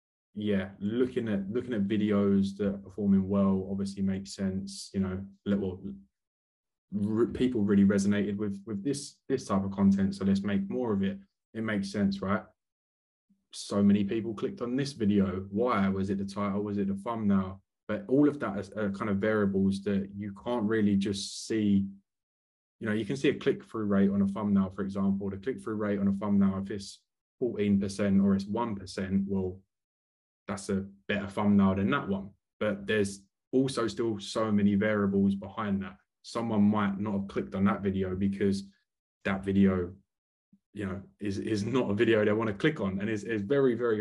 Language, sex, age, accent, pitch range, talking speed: English, male, 20-39, British, 95-105 Hz, 190 wpm